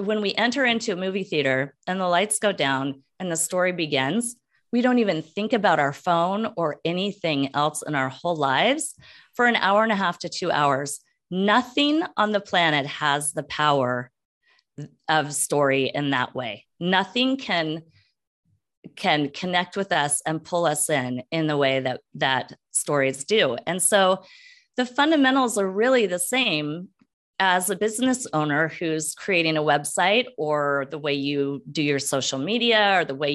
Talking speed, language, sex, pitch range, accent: 170 wpm, English, female, 145-210 Hz, American